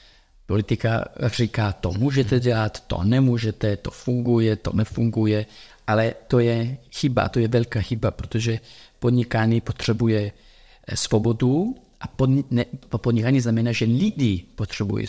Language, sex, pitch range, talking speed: Czech, male, 105-125 Hz, 125 wpm